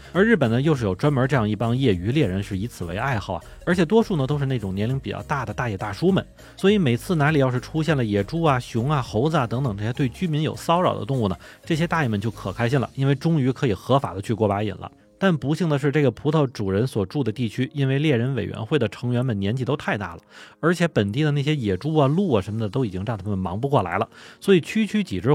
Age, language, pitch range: 30-49, Chinese, 105-150 Hz